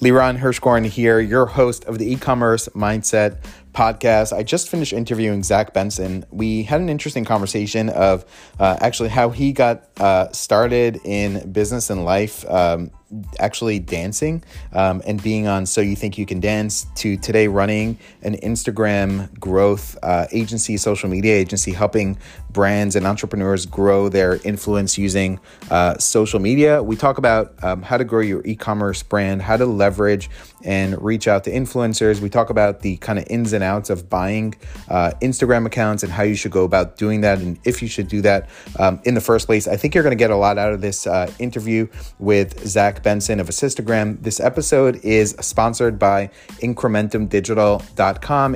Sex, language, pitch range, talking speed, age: male, English, 95-110 Hz, 180 wpm, 30-49